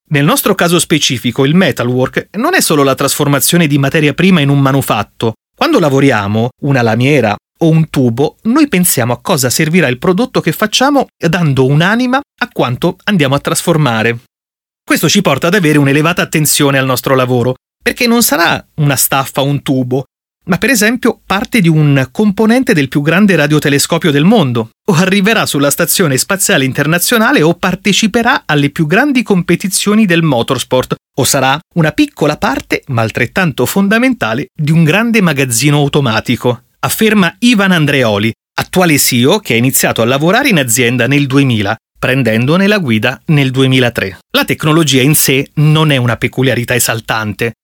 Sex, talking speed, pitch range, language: male, 160 wpm, 130-190 Hz, Italian